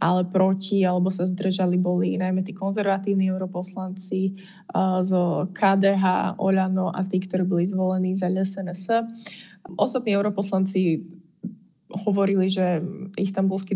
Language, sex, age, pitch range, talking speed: Slovak, female, 20-39, 185-195 Hz, 110 wpm